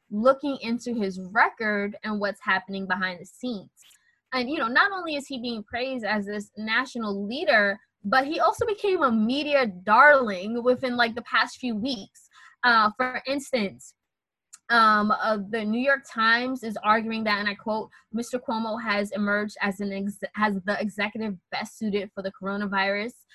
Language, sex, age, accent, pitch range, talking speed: English, female, 20-39, American, 205-255 Hz, 170 wpm